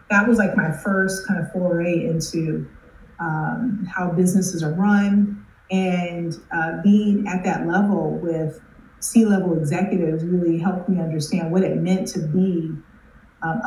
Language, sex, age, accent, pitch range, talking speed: English, female, 30-49, American, 165-200 Hz, 145 wpm